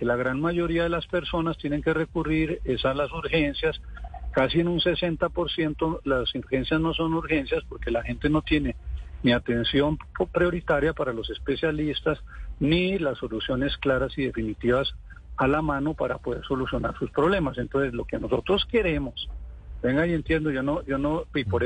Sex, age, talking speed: male, 50-69, 170 wpm